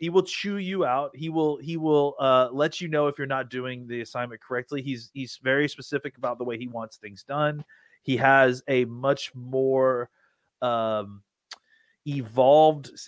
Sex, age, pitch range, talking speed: male, 30-49, 125-155 Hz, 175 wpm